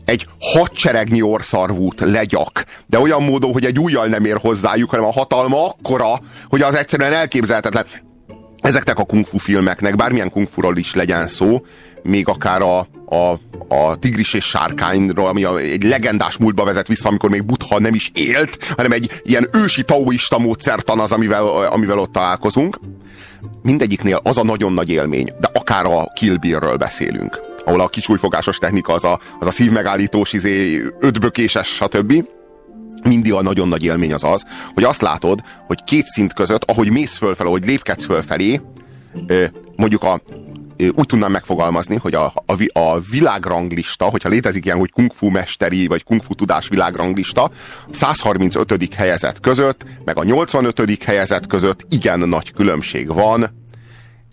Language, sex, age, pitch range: Hungarian, male, 30-49, 95-115 Hz